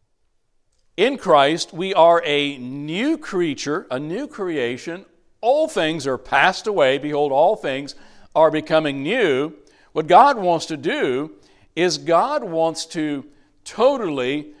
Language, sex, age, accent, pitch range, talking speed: English, male, 60-79, American, 125-175 Hz, 125 wpm